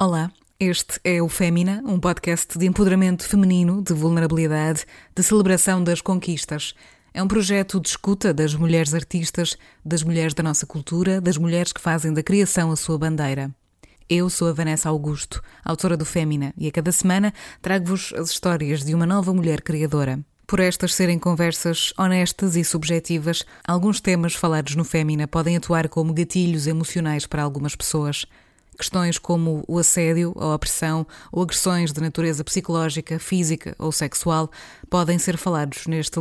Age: 20-39